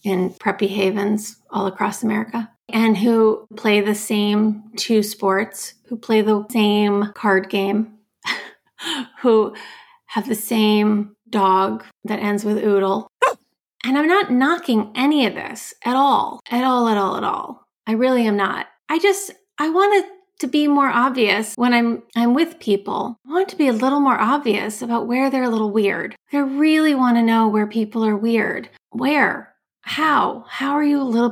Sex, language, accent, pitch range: female, English, American, 210-260 Hz